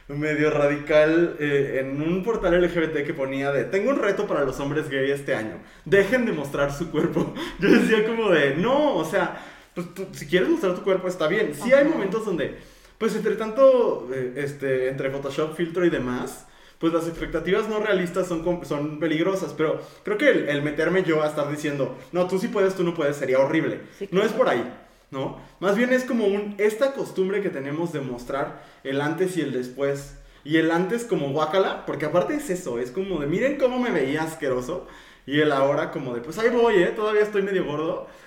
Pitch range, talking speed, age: 145-200 Hz, 210 wpm, 20-39